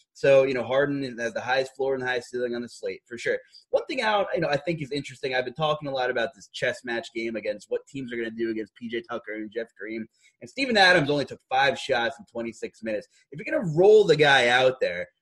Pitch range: 120-180 Hz